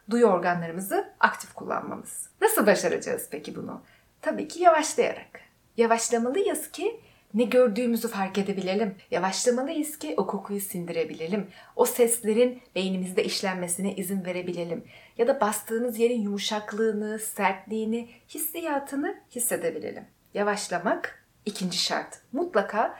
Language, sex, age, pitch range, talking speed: Turkish, female, 30-49, 190-255 Hz, 105 wpm